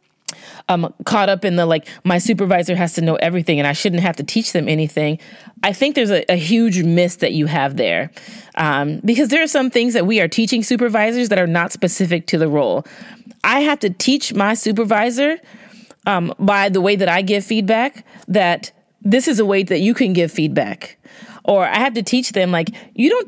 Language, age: English, 30-49